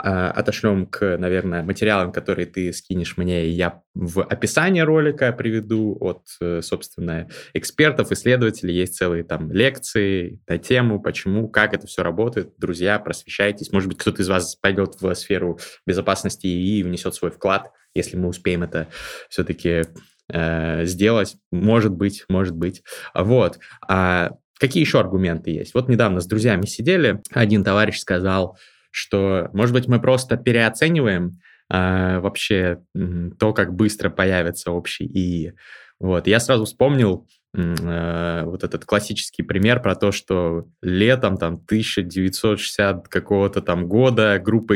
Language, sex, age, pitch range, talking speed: Russian, male, 20-39, 90-110 Hz, 135 wpm